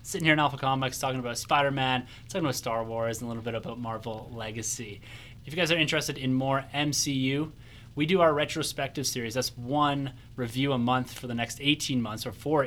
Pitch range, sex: 115-135 Hz, male